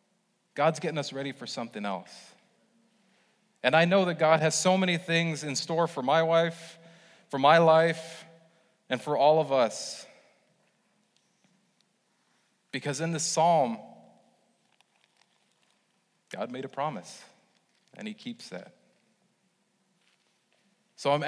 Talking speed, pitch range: 120 wpm, 145-185 Hz